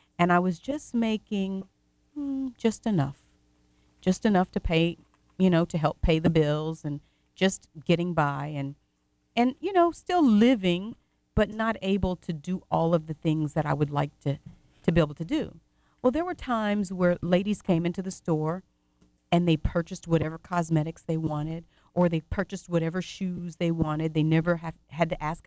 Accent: American